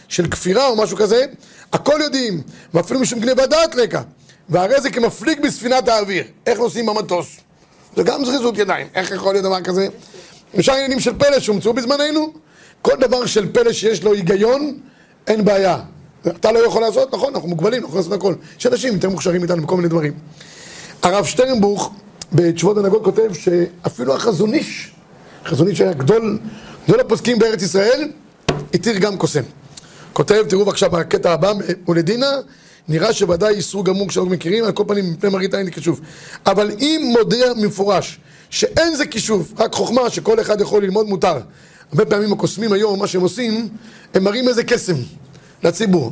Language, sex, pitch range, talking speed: Hebrew, male, 175-230 Hz, 160 wpm